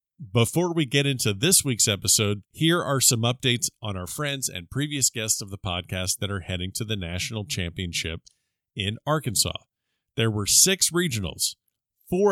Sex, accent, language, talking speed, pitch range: male, American, English, 165 wpm, 100-130 Hz